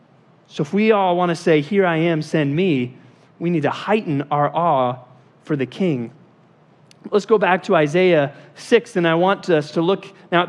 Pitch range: 150-200 Hz